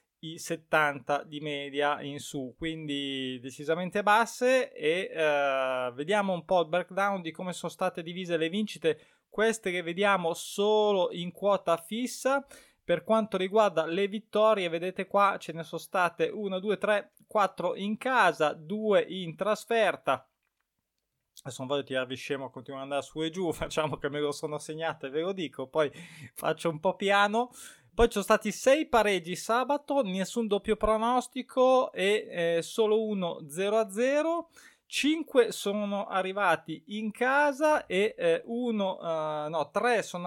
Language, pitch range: Italian, 160-215 Hz